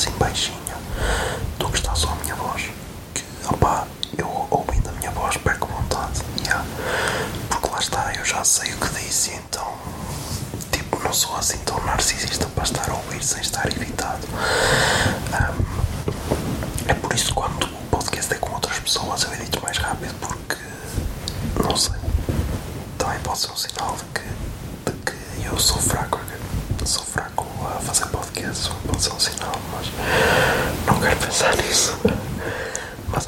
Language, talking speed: Portuguese, 140 wpm